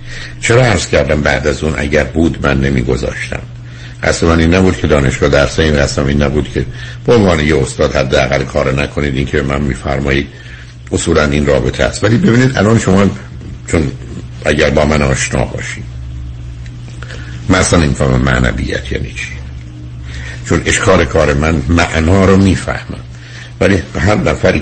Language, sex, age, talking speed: Persian, male, 60-79, 155 wpm